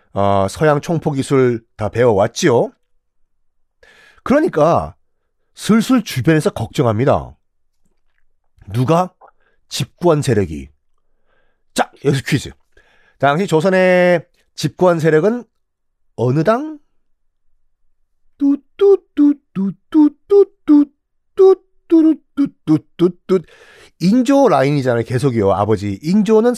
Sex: male